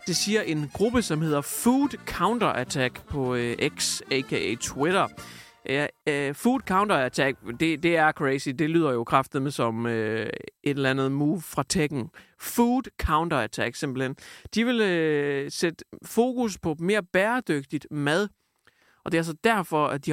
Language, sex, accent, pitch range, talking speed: Danish, male, native, 140-185 Hz, 160 wpm